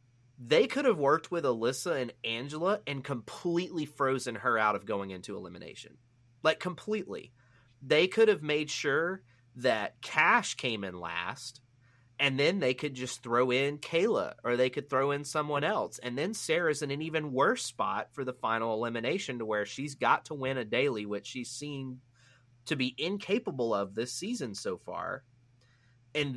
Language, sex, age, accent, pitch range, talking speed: English, male, 30-49, American, 120-155 Hz, 175 wpm